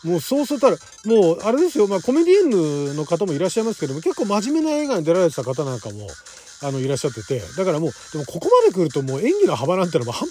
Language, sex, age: Japanese, male, 40-59